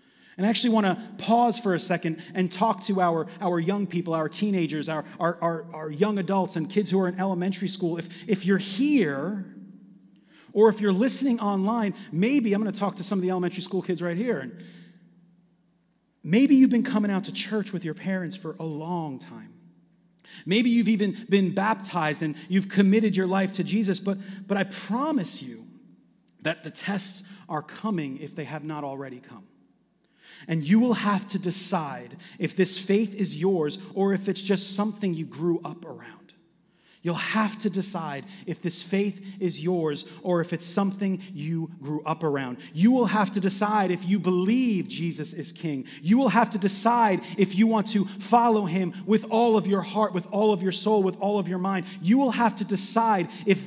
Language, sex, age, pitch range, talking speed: English, male, 30-49, 175-210 Hz, 200 wpm